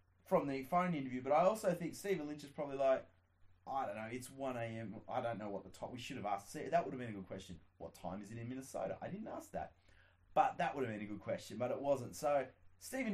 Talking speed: 270 wpm